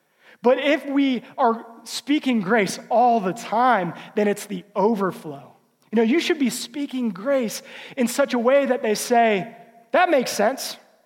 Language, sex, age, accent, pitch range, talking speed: English, male, 30-49, American, 210-280 Hz, 165 wpm